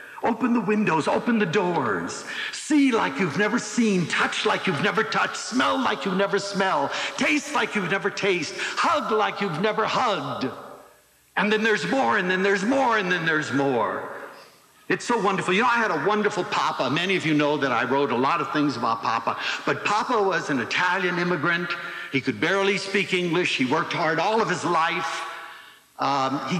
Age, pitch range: 60-79, 165-230 Hz